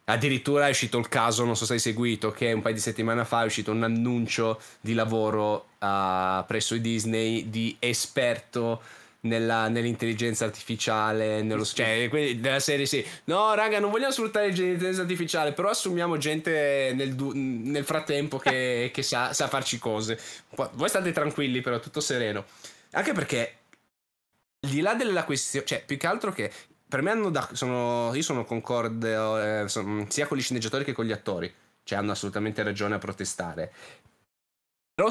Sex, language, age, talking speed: male, Italian, 10-29, 165 wpm